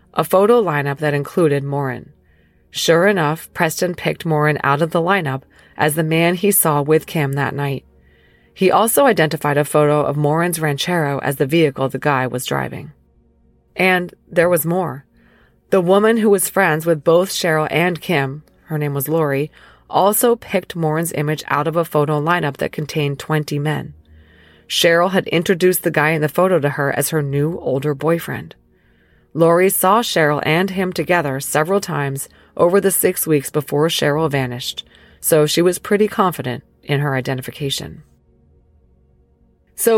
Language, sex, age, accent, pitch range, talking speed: English, female, 30-49, American, 140-175 Hz, 165 wpm